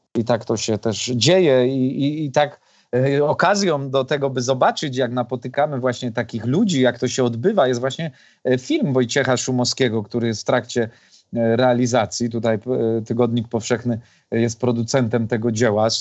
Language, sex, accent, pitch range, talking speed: Polish, male, native, 120-130 Hz, 155 wpm